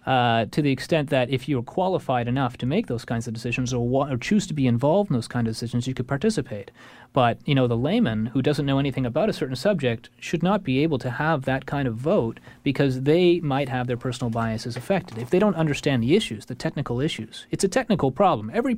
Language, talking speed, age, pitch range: English, 235 wpm, 30-49, 120-160 Hz